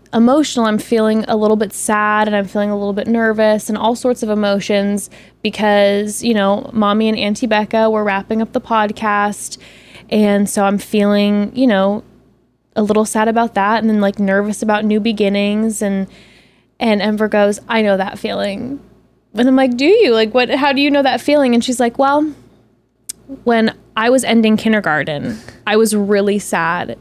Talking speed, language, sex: 185 wpm, English, female